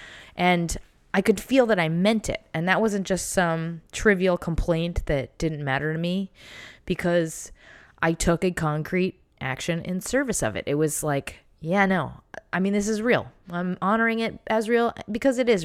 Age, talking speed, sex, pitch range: 20-39, 185 wpm, female, 160-200 Hz